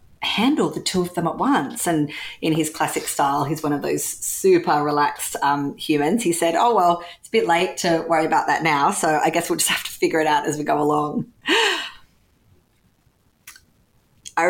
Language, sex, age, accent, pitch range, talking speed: English, female, 30-49, Australian, 155-190 Hz, 200 wpm